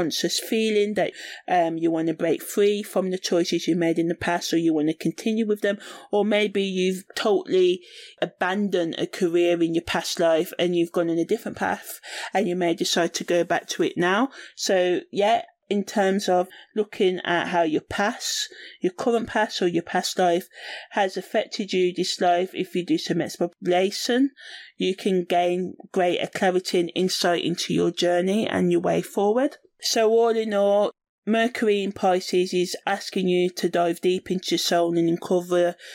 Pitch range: 170-200 Hz